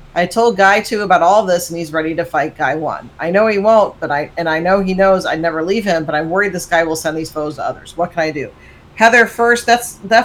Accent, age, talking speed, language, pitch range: American, 40-59, 280 wpm, English, 155-185 Hz